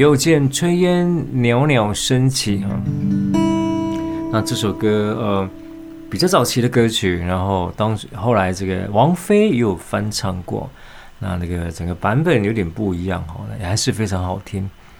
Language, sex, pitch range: Chinese, male, 95-125 Hz